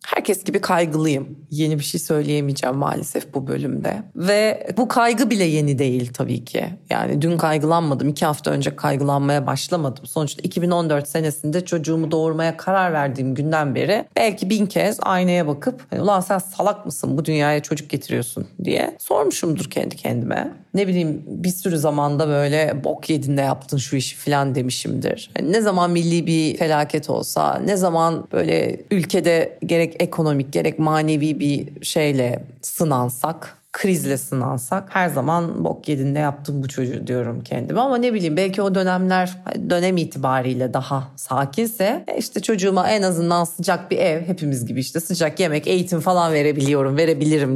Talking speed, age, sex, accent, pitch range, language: 150 wpm, 30-49, female, native, 145-185 Hz, Turkish